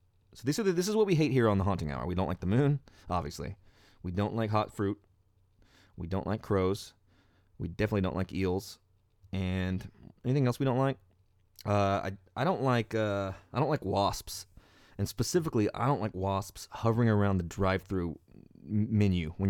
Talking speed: 195 wpm